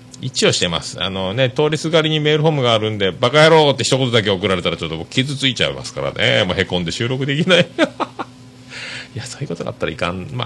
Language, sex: Japanese, male